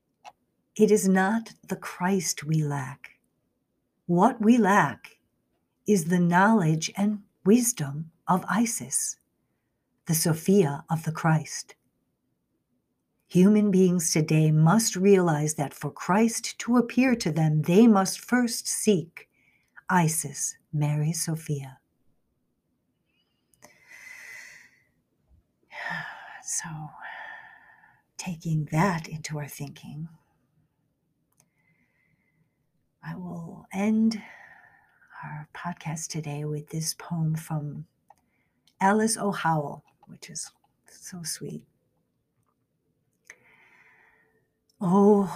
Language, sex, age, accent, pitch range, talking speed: English, female, 60-79, American, 155-200 Hz, 85 wpm